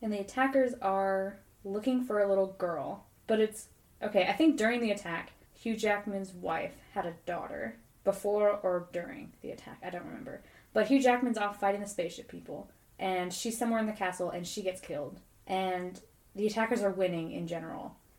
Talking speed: 185 wpm